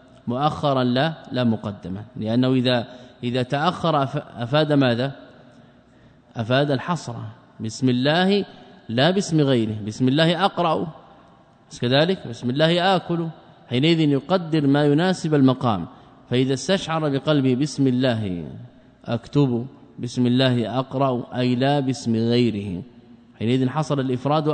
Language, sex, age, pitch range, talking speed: Arabic, male, 20-39, 120-150 Hz, 110 wpm